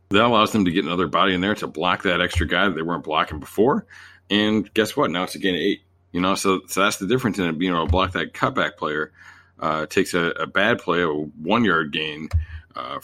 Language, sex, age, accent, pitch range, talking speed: English, male, 40-59, American, 85-100 Hz, 245 wpm